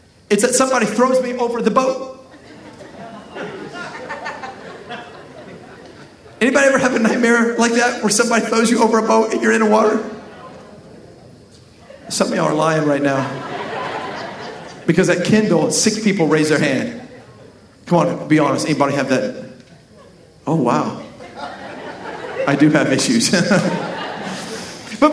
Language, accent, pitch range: English, American, 215-280 Hz